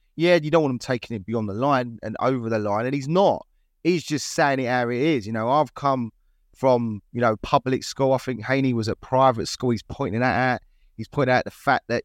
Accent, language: British, English